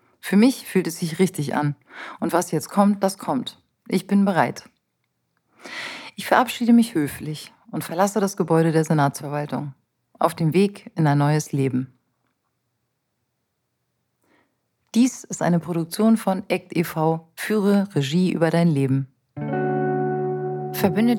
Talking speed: 130 wpm